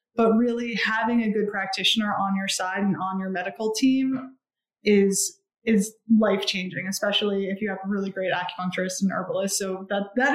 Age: 20-39